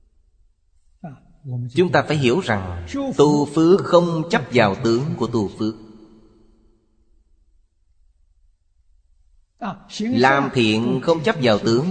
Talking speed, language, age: 100 wpm, Vietnamese, 30-49